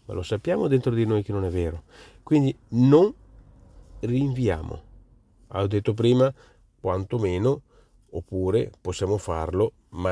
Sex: male